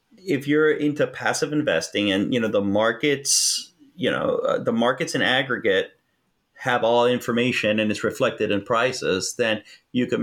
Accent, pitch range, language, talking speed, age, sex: American, 120-150 Hz, English, 165 wpm, 30-49, male